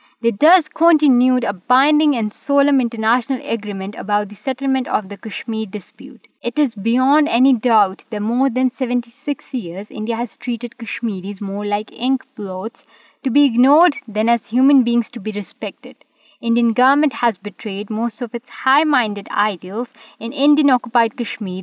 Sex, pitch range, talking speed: female, 210-260 Hz, 155 wpm